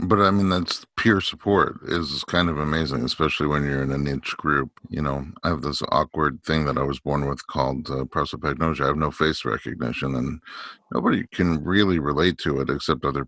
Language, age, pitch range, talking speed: English, 50-69, 70-85 Hz, 210 wpm